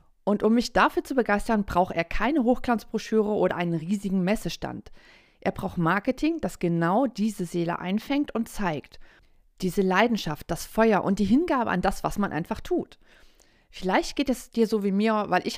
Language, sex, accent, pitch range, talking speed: German, female, German, 180-230 Hz, 175 wpm